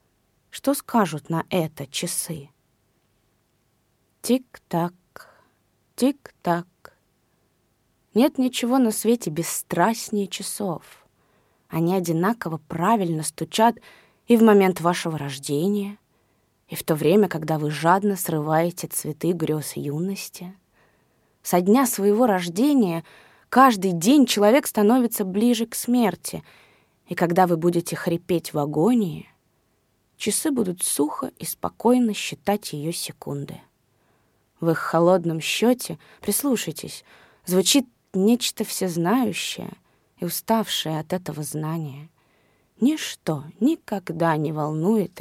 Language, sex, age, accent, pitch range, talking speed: Russian, female, 20-39, native, 155-215 Hz, 100 wpm